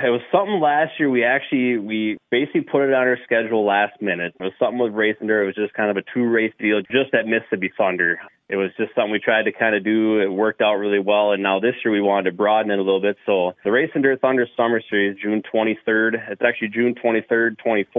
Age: 20-39